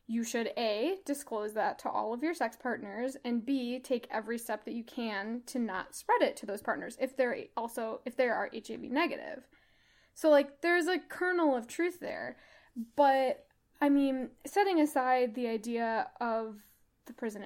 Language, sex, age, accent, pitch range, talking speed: English, female, 10-29, American, 220-280 Hz, 180 wpm